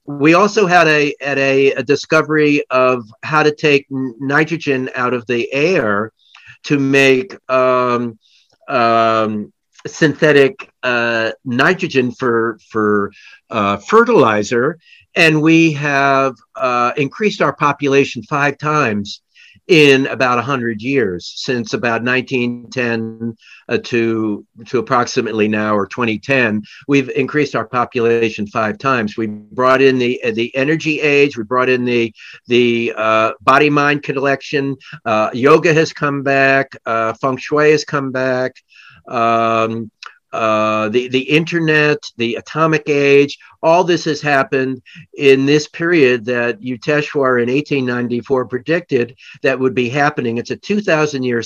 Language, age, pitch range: English, 50-69, 120-150 Hz